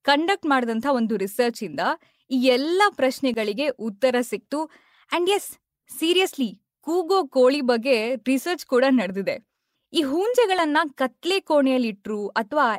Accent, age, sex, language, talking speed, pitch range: native, 20-39, female, Kannada, 115 wpm, 245-330 Hz